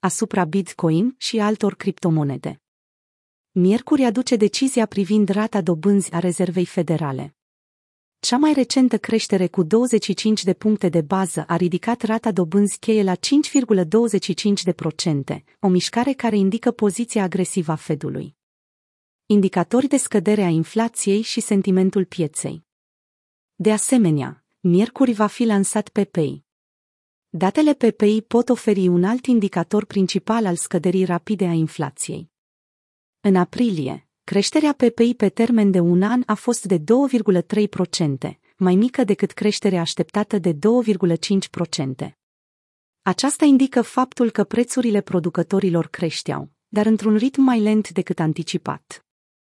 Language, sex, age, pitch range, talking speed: Romanian, female, 30-49, 180-230 Hz, 125 wpm